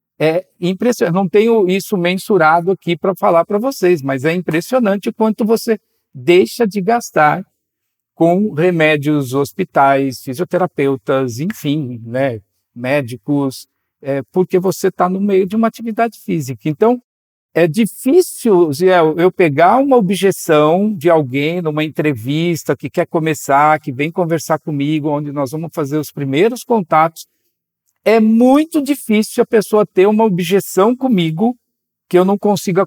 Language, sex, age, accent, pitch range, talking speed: Portuguese, male, 50-69, Brazilian, 145-205 Hz, 140 wpm